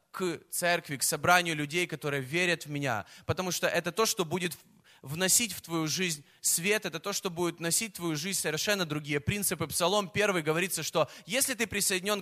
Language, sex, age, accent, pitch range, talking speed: Russian, male, 20-39, native, 160-210 Hz, 185 wpm